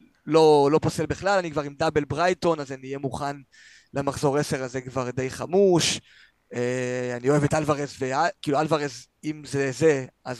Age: 20-39